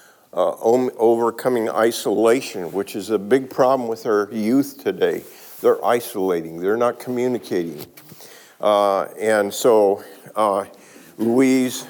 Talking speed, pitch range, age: 110 wpm, 110-130 Hz, 50-69